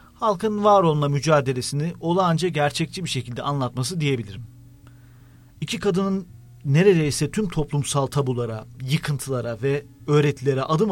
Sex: male